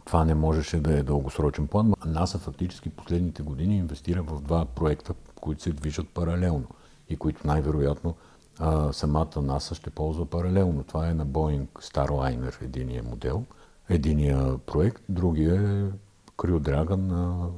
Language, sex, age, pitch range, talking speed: Bulgarian, male, 50-69, 75-90 Hz, 145 wpm